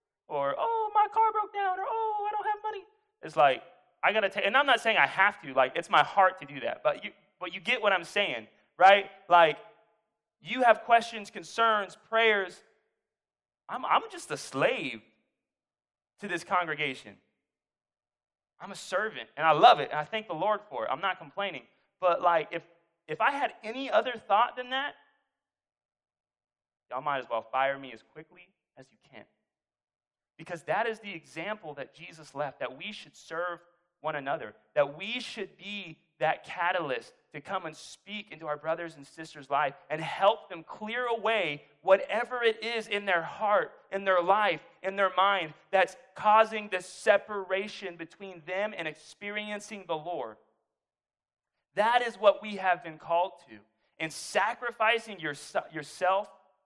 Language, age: English, 20-39